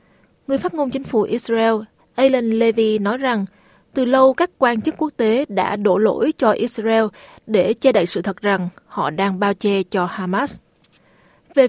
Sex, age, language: female, 20-39, Vietnamese